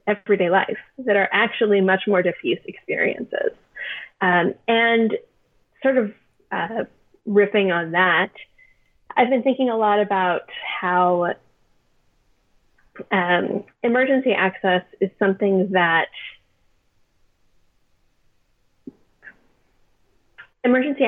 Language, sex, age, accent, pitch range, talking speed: English, female, 30-49, American, 185-230 Hz, 90 wpm